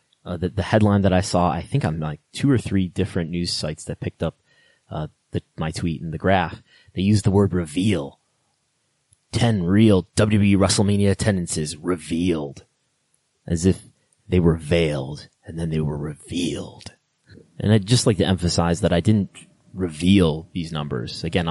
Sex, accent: male, American